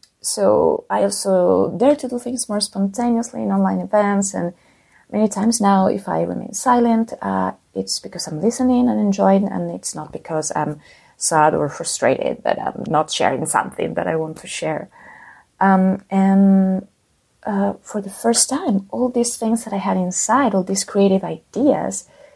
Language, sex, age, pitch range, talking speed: English, female, 30-49, 175-230 Hz, 170 wpm